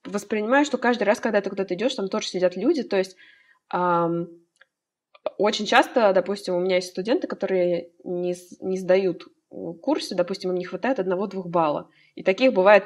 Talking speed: 170 wpm